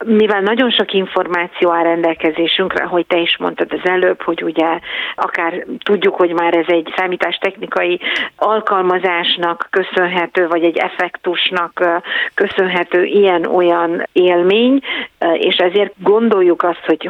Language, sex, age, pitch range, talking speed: Hungarian, female, 50-69, 170-200 Hz, 120 wpm